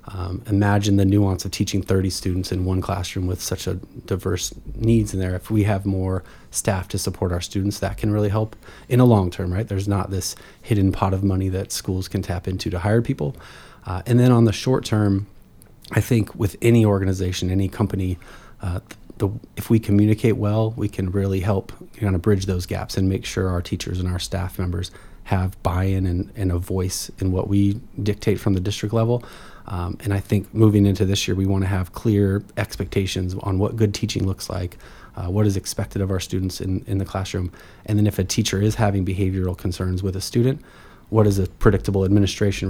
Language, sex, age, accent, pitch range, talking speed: English, male, 30-49, American, 95-105 Hz, 210 wpm